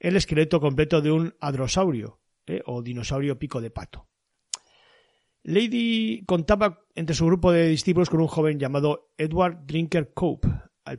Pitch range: 130-170 Hz